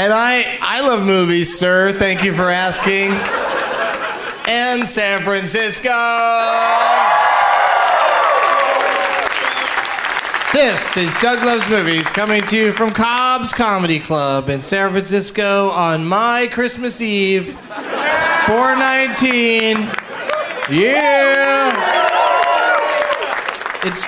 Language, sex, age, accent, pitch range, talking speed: English, male, 30-49, American, 170-255 Hz, 85 wpm